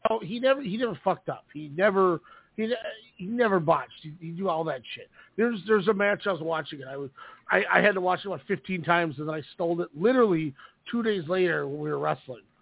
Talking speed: 240 wpm